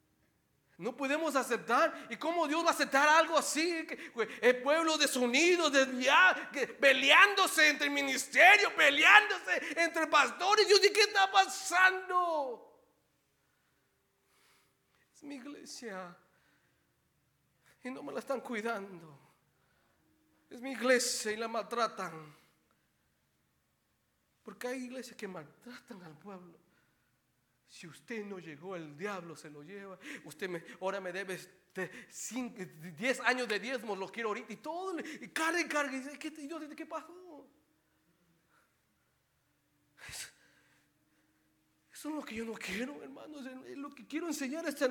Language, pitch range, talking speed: Spanish, 210-315 Hz, 130 wpm